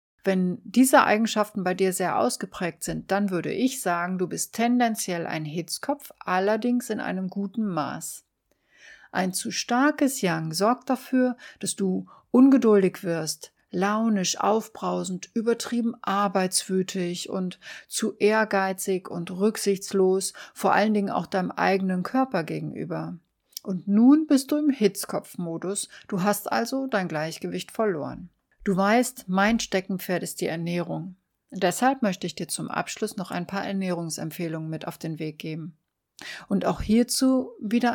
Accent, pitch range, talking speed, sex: German, 175-230 Hz, 140 wpm, female